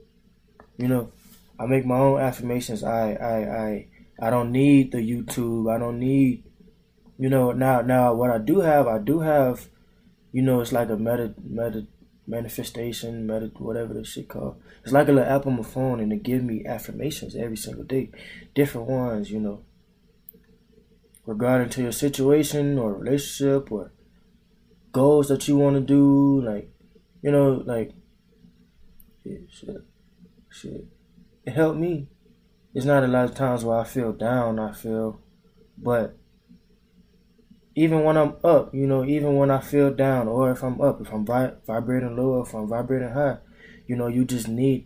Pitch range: 115-135 Hz